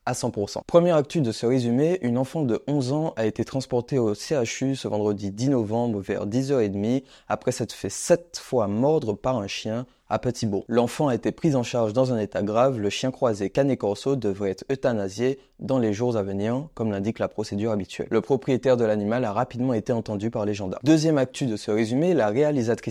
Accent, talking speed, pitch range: French, 210 wpm, 110-135 Hz